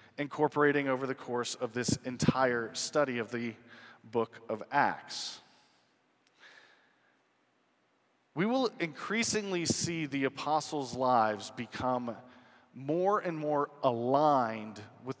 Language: English